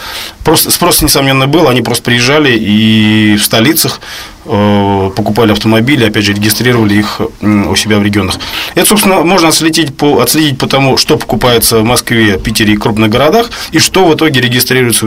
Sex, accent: male, native